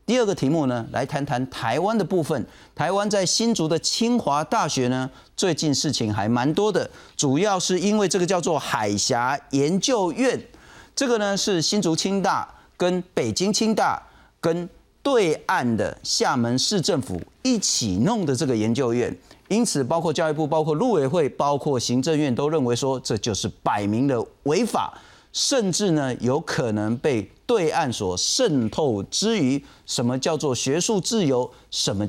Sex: male